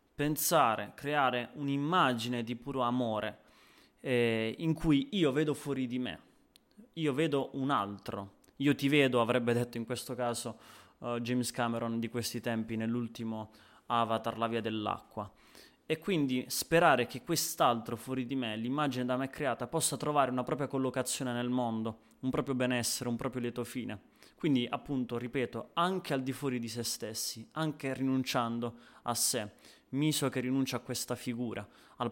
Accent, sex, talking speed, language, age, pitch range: native, male, 155 wpm, Italian, 20-39, 115-135 Hz